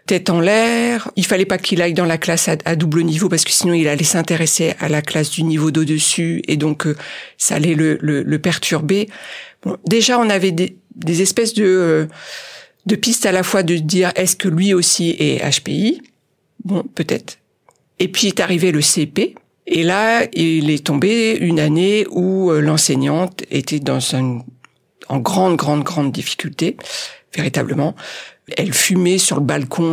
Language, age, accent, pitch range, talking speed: French, 50-69, French, 155-205 Hz, 175 wpm